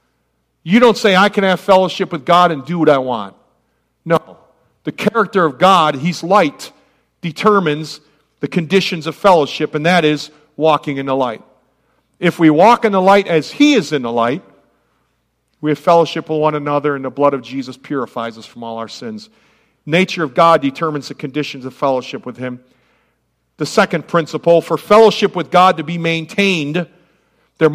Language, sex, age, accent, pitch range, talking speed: English, male, 50-69, American, 145-190 Hz, 180 wpm